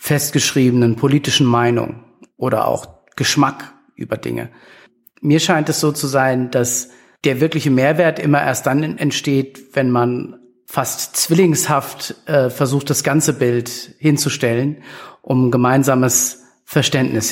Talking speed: 120 wpm